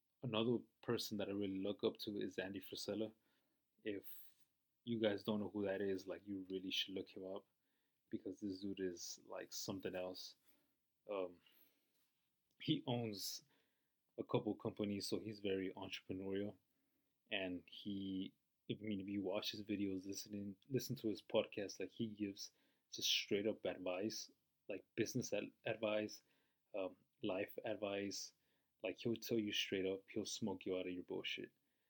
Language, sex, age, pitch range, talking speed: English, male, 20-39, 95-110 Hz, 160 wpm